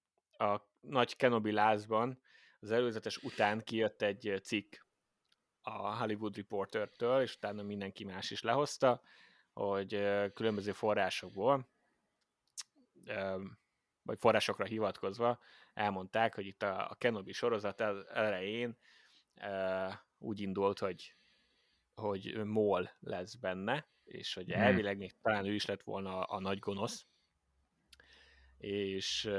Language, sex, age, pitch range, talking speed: Hungarian, male, 20-39, 100-115 Hz, 105 wpm